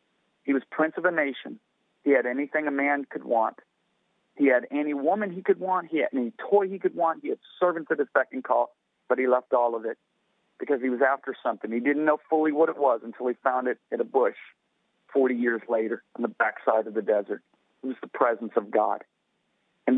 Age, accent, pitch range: 40-59, American, 125-155 Hz